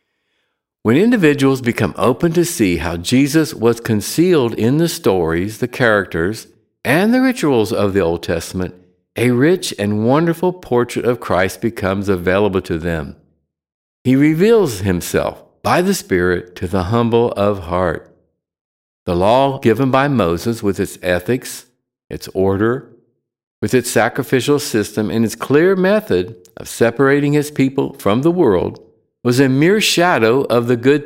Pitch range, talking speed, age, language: 95-140 Hz, 145 wpm, 60-79, English